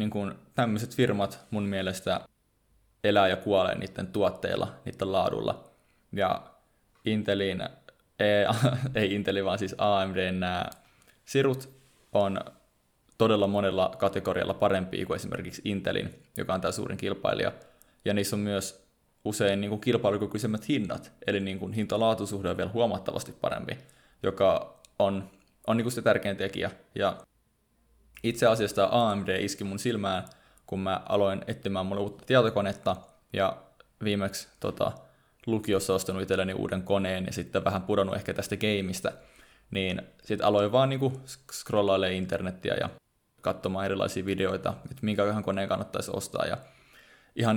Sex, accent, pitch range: male, native, 95-110 Hz